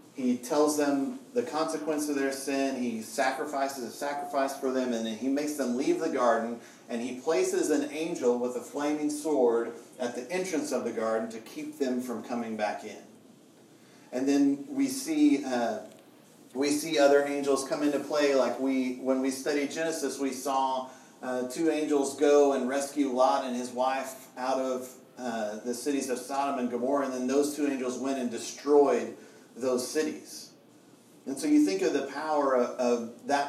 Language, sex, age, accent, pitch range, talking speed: English, male, 40-59, American, 125-145 Hz, 185 wpm